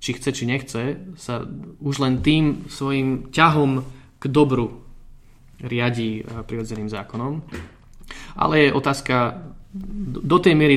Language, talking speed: Slovak, 125 wpm